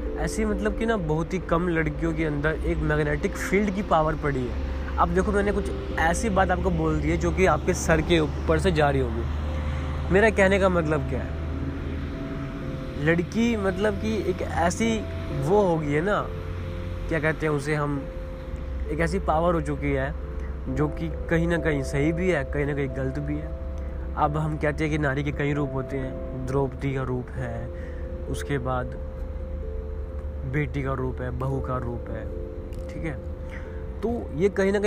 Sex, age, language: male, 20-39, Hindi